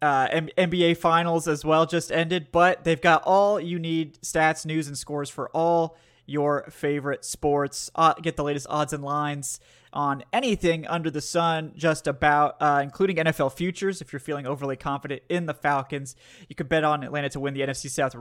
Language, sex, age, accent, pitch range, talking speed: English, male, 20-39, American, 140-165 Hz, 195 wpm